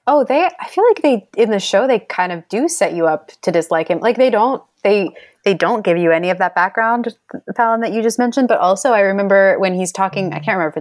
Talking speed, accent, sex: 260 wpm, American, female